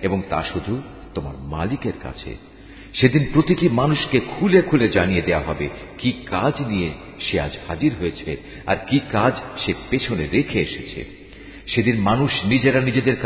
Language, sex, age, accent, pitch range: Bengali, male, 50-69, native, 90-130 Hz